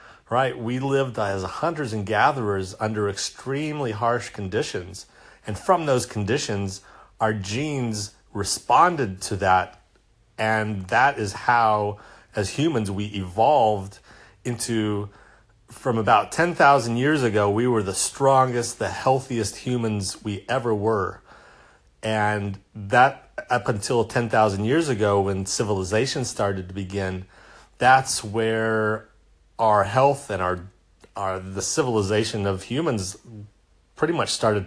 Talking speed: 120 wpm